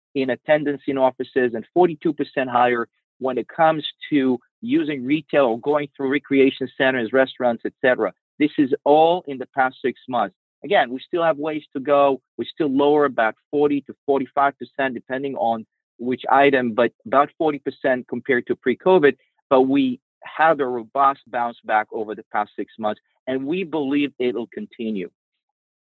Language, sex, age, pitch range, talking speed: English, male, 40-59, 125-145 Hz, 160 wpm